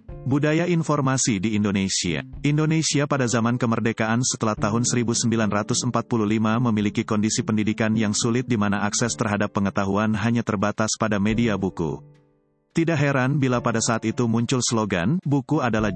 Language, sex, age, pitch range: Indonesian, male, 30-49, 105-125 Hz